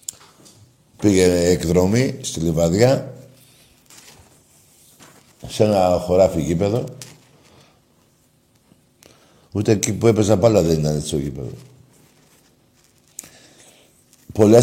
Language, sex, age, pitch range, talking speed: Greek, male, 60-79, 85-110 Hz, 80 wpm